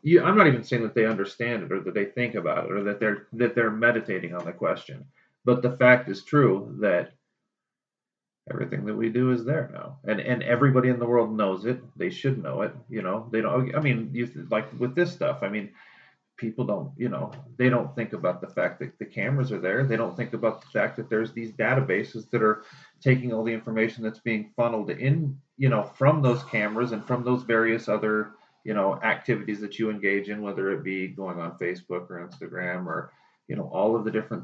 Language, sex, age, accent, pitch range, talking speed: English, male, 40-59, American, 105-125 Hz, 220 wpm